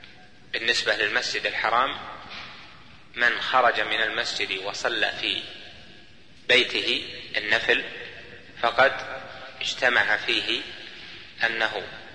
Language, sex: Arabic, male